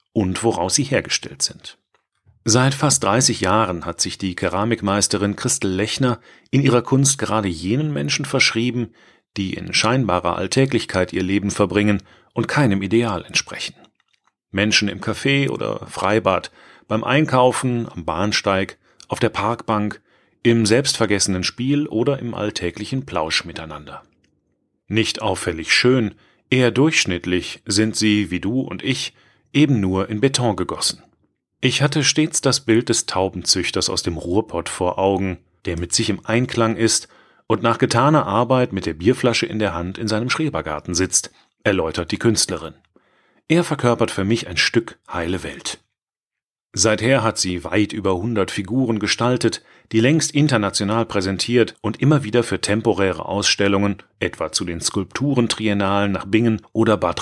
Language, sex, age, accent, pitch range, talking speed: German, male, 40-59, German, 95-120 Hz, 145 wpm